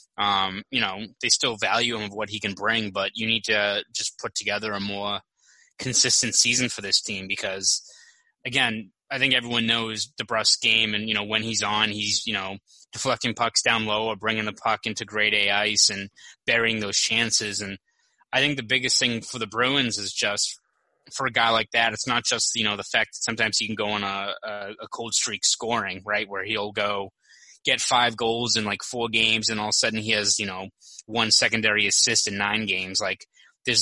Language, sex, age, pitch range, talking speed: English, male, 20-39, 105-120 Hz, 215 wpm